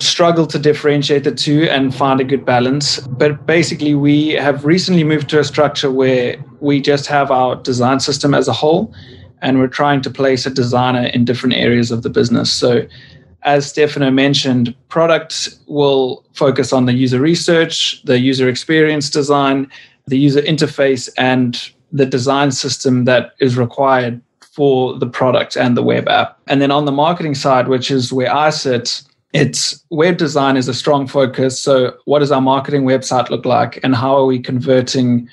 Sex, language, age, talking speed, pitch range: male, English, 20-39, 180 wpm, 130-145 Hz